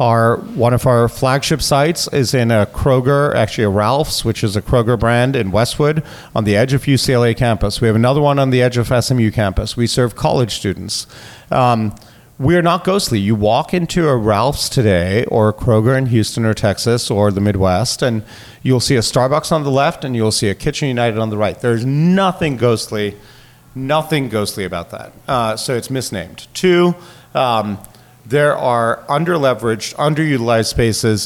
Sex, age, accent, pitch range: male, 40-59, American, 110-135 Hz